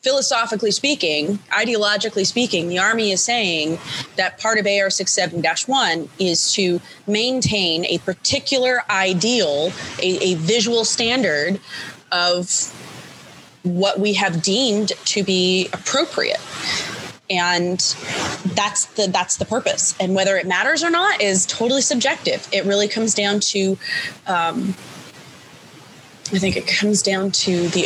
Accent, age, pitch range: American, 20-39, 180-220 Hz